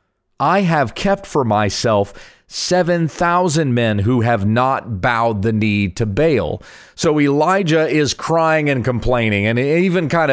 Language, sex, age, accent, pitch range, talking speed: English, male, 30-49, American, 110-170 Hz, 140 wpm